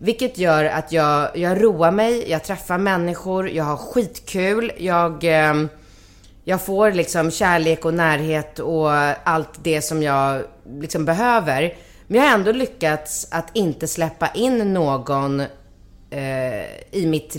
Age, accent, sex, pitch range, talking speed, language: 30-49, native, female, 140-170 Hz, 140 wpm, Swedish